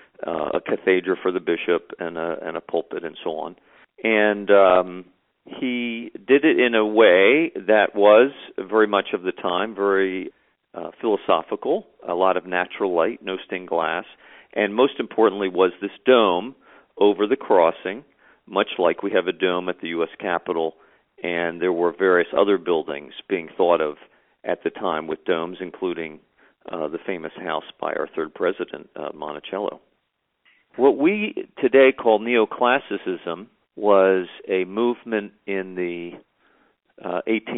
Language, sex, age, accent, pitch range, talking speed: English, male, 50-69, American, 90-110 Hz, 150 wpm